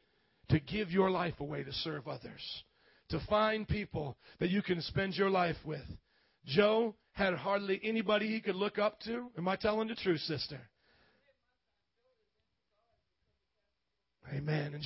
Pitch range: 160-200 Hz